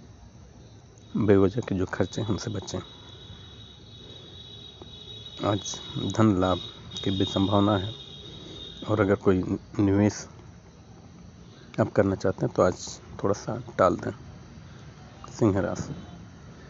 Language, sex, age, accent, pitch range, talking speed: Hindi, male, 50-69, native, 95-115 Hz, 110 wpm